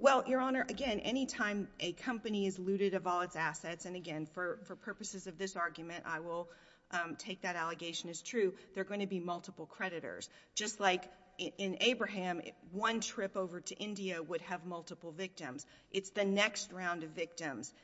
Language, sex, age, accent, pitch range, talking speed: English, female, 40-59, American, 175-220 Hz, 190 wpm